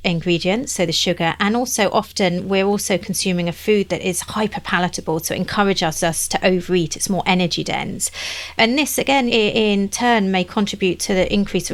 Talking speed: 185 wpm